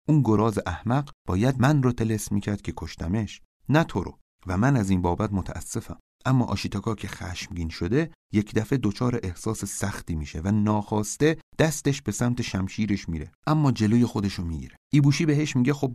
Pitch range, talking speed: 95-125 Hz, 175 wpm